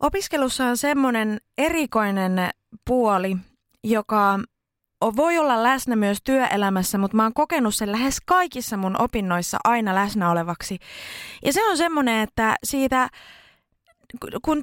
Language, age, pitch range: Finnish, 20-39, 200-280 Hz